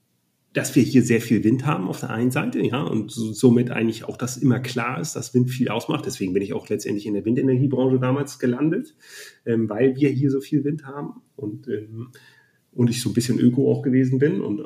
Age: 40-59